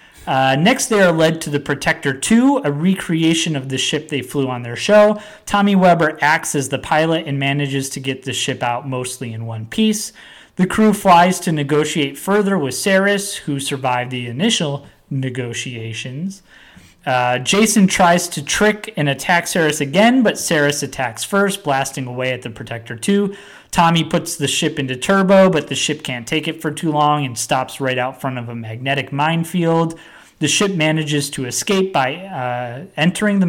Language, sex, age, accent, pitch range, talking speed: English, male, 30-49, American, 130-180 Hz, 180 wpm